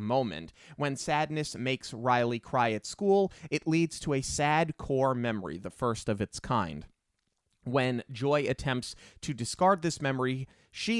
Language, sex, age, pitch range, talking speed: English, male, 30-49, 115-150 Hz, 155 wpm